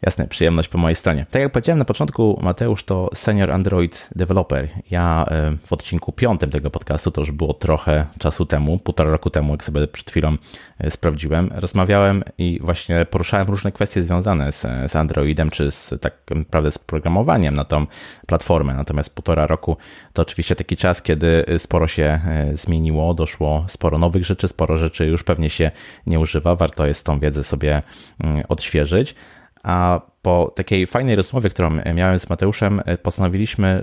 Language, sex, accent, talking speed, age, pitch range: Polish, male, native, 160 wpm, 30-49, 80-95 Hz